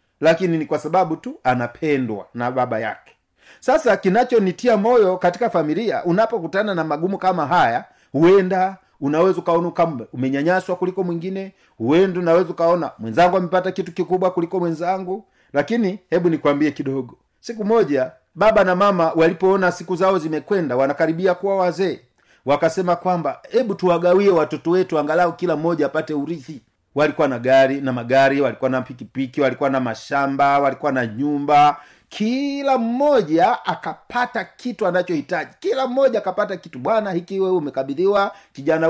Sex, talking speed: male, 135 wpm